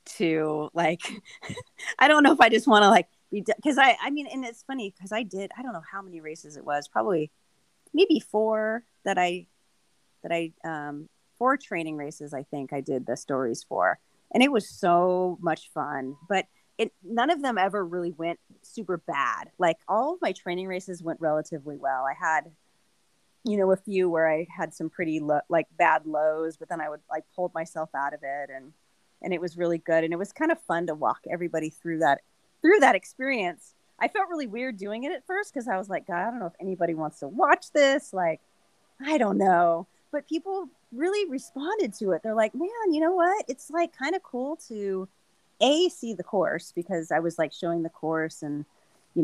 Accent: American